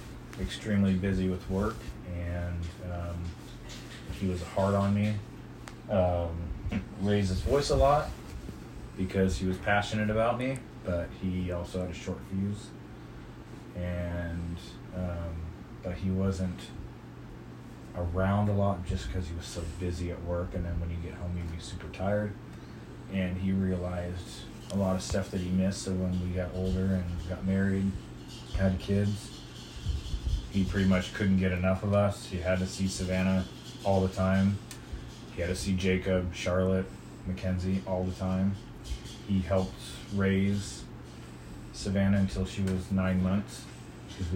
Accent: American